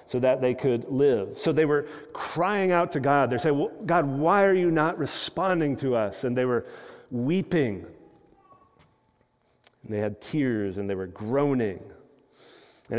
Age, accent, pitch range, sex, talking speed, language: 40-59, American, 125-155 Hz, male, 160 wpm, English